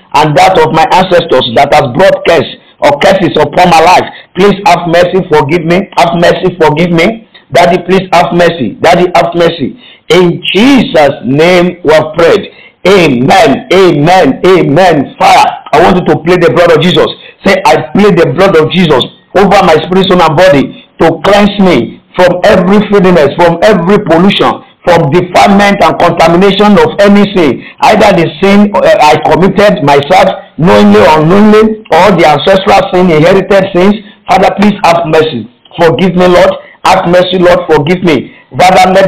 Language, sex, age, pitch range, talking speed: English, male, 50-69, 165-195 Hz, 165 wpm